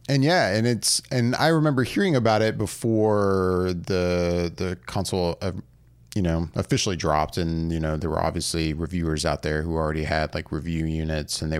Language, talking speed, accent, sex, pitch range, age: English, 185 wpm, American, male, 85-120 Hz, 30-49